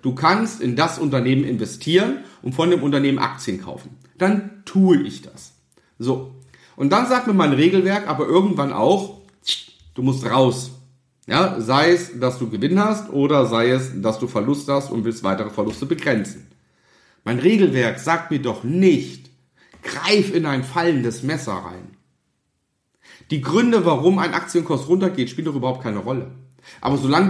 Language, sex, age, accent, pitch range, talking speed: German, male, 40-59, German, 115-175 Hz, 160 wpm